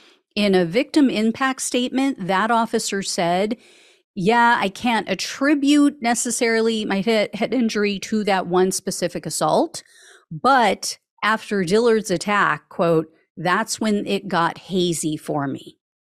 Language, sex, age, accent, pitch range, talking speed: English, female, 40-59, American, 175-255 Hz, 125 wpm